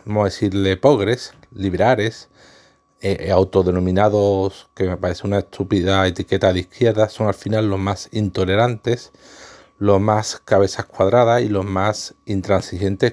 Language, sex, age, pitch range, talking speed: Spanish, male, 40-59, 95-120 Hz, 135 wpm